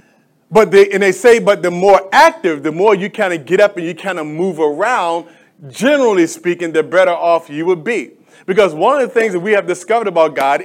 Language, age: English, 30-49